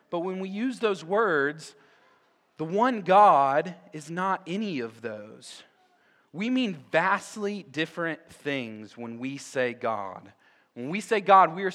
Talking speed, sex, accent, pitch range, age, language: 150 wpm, male, American, 135-190 Hz, 30-49, English